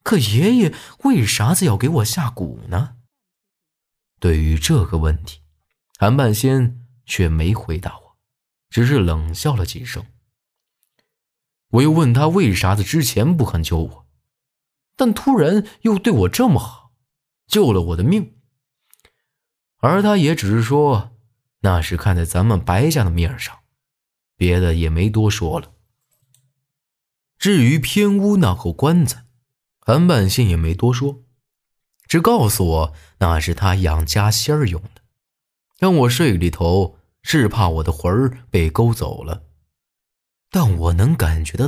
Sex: male